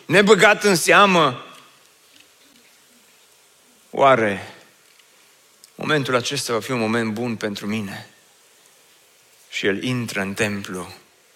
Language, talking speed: Romanian, 95 wpm